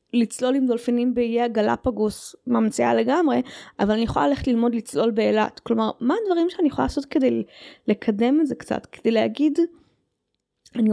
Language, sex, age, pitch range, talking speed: Hebrew, female, 20-39, 215-280 Hz, 155 wpm